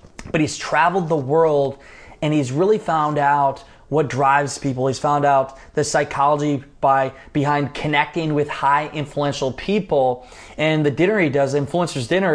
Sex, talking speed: male, 150 wpm